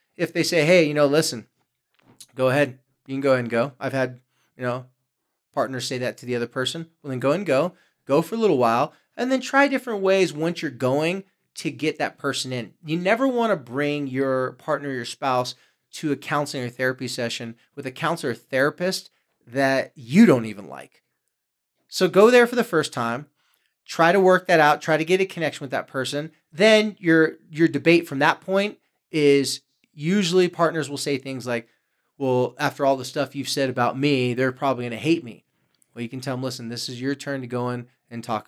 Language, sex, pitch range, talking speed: English, male, 125-160 Hz, 215 wpm